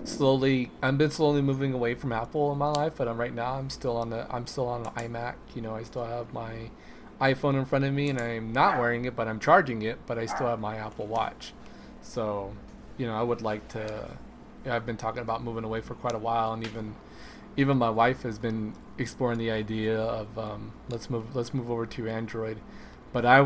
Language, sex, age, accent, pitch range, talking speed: English, male, 20-39, American, 110-130 Hz, 235 wpm